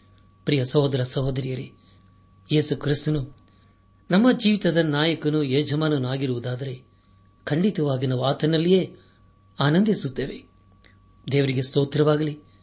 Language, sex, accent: Kannada, male, native